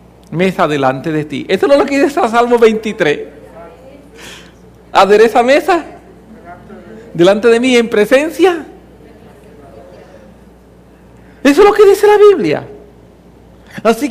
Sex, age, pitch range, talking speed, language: male, 50-69, 180-235 Hz, 110 wpm, English